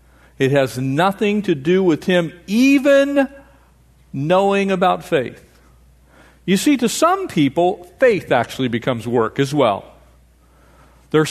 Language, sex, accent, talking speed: English, male, American, 120 wpm